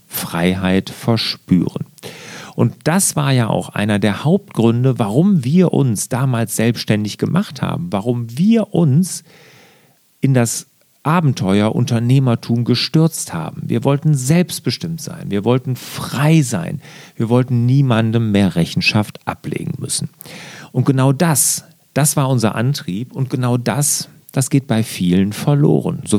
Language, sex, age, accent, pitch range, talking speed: German, male, 40-59, German, 120-165 Hz, 130 wpm